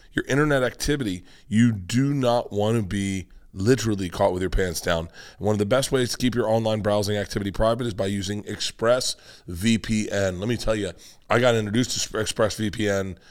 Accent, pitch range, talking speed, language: American, 100-125 Hz, 180 wpm, English